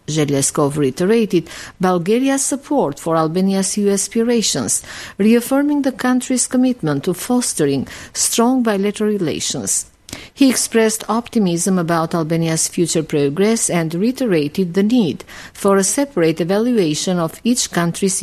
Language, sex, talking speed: English, female, 115 wpm